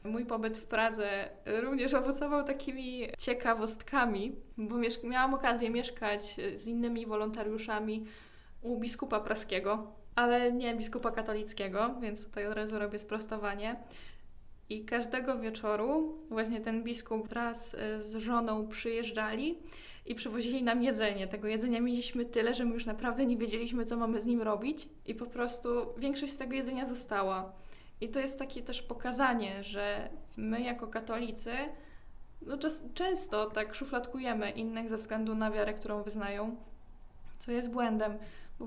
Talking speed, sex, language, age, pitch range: 140 wpm, female, Polish, 20-39, 220-250 Hz